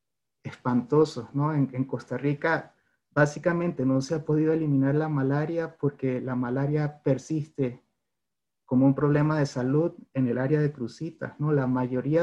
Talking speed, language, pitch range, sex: 150 wpm, Spanish, 130-150 Hz, male